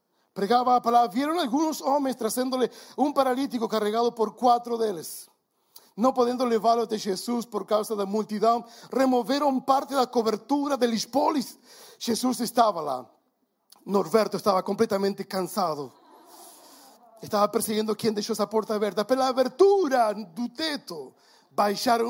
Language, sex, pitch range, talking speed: Portuguese, male, 215-255 Hz, 130 wpm